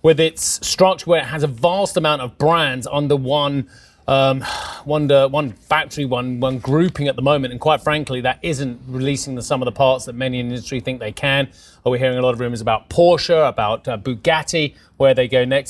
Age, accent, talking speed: 30-49, British, 225 wpm